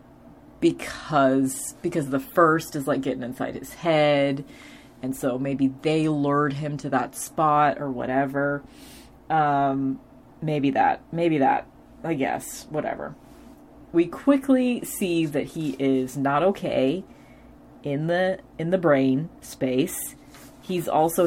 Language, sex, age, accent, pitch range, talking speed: English, female, 30-49, American, 135-160 Hz, 125 wpm